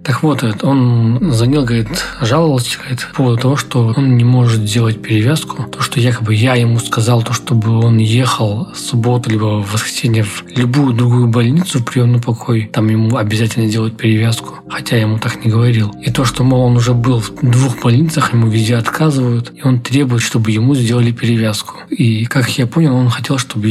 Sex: male